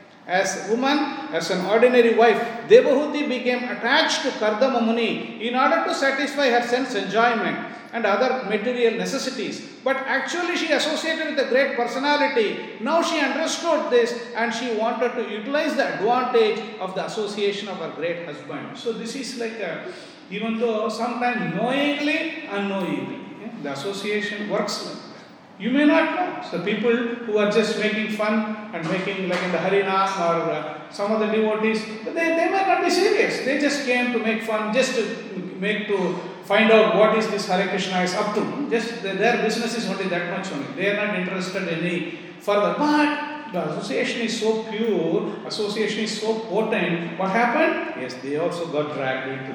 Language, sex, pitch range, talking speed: English, male, 190-250 Hz, 175 wpm